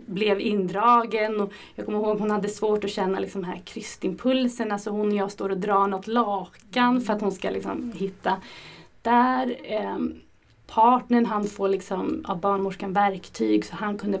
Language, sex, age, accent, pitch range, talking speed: Swedish, female, 30-49, native, 195-235 Hz, 175 wpm